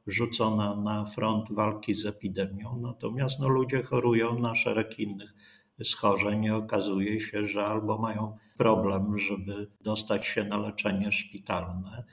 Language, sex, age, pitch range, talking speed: Polish, male, 50-69, 105-115 Hz, 130 wpm